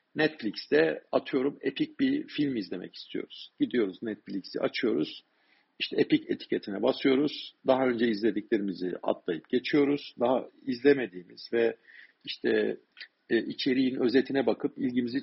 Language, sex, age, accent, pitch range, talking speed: Turkish, male, 50-69, native, 110-160 Hz, 110 wpm